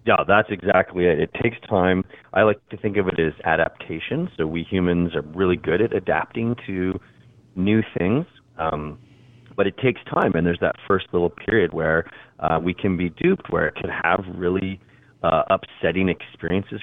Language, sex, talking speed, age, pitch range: English, male, 180 wpm, 30-49, 80-100 Hz